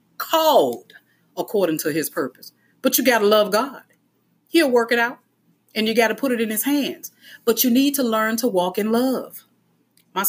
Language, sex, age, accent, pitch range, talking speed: English, female, 40-59, American, 170-220 Hz, 200 wpm